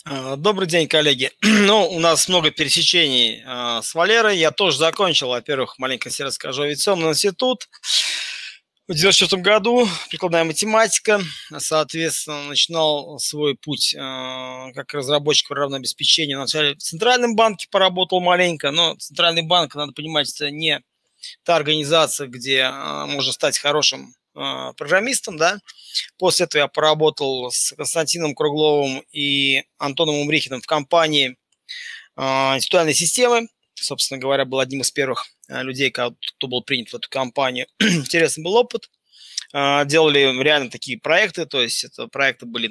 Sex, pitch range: male, 135-180 Hz